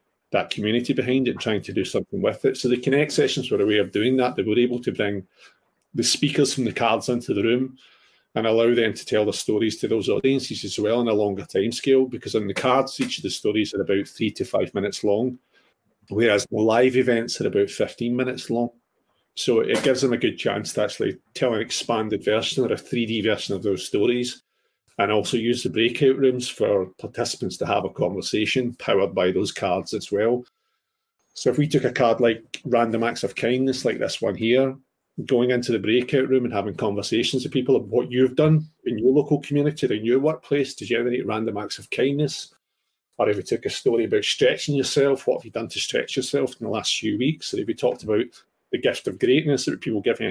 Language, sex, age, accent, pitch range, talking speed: English, male, 40-59, British, 115-140 Hz, 225 wpm